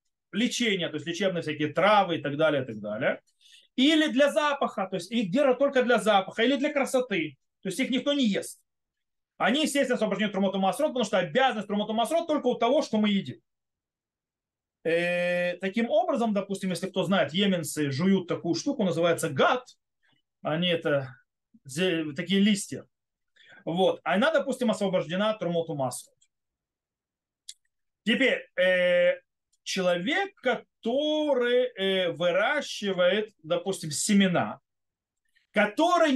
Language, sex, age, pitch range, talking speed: Russian, male, 30-49, 170-255 Hz, 125 wpm